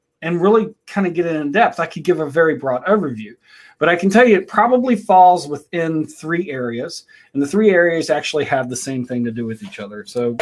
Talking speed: 235 wpm